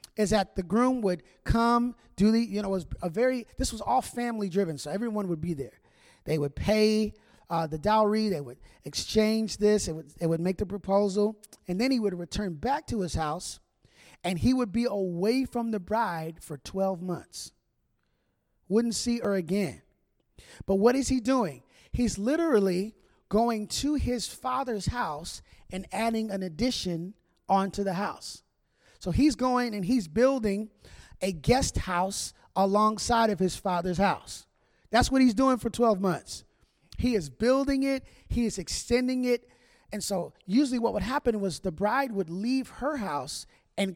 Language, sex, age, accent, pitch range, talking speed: English, male, 30-49, American, 185-240 Hz, 175 wpm